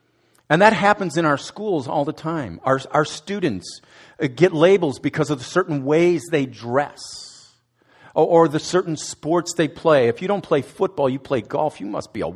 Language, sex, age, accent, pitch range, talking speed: English, male, 50-69, American, 105-150 Hz, 195 wpm